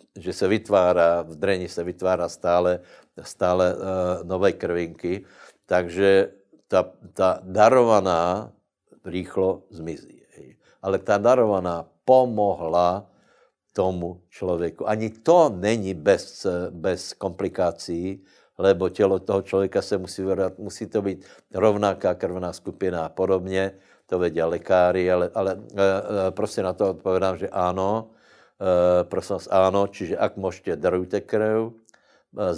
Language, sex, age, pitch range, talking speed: Slovak, male, 60-79, 85-100 Hz, 125 wpm